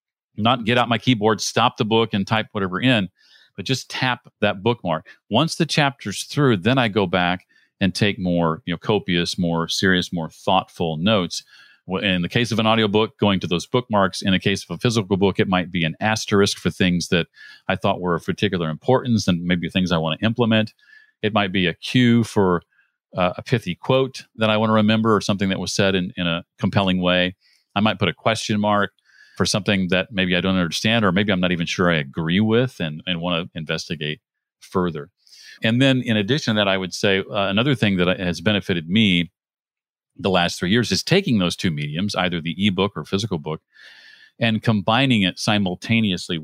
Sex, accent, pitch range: male, American, 90-110 Hz